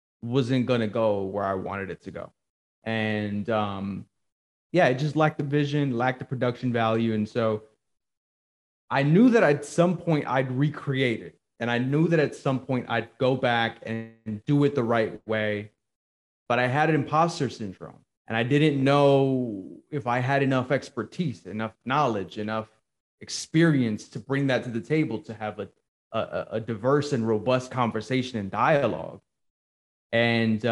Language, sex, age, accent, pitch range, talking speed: English, male, 20-39, American, 105-135 Hz, 165 wpm